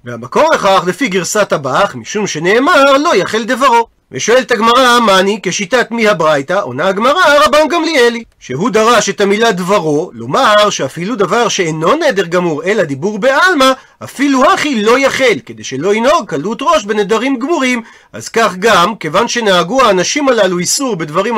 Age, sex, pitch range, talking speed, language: 40-59, male, 190-265 Hz, 150 wpm, Hebrew